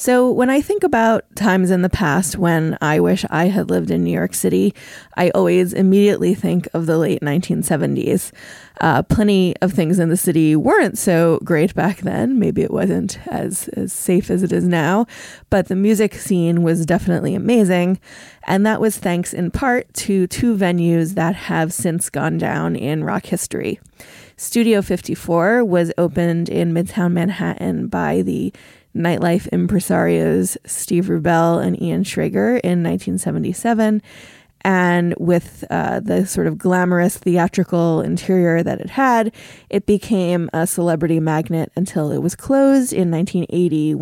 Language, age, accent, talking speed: English, 20-39, American, 155 wpm